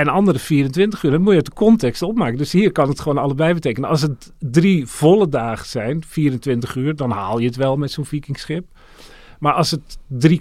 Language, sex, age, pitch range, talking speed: Dutch, male, 40-59, 115-155 Hz, 220 wpm